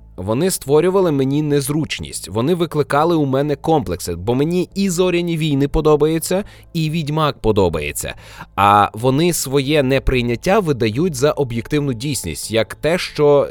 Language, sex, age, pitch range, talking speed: Ukrainian, male, 20-39, 110-155 Hz, 130 wpm